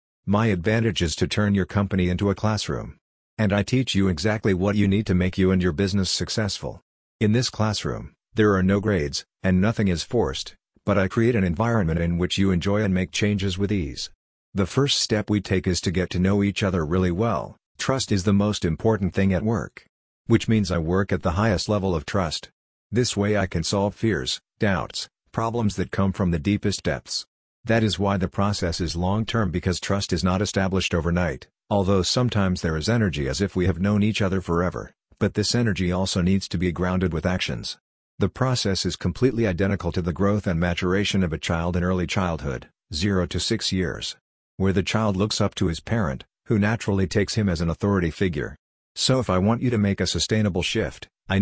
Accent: American